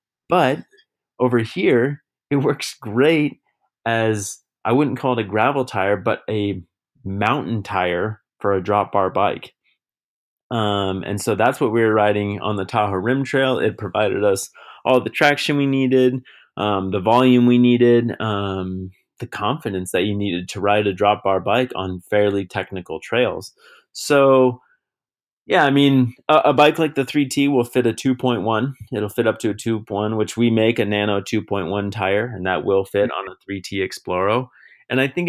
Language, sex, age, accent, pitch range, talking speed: English, male, 30-49, American, 100-125 Hz, 175 wpm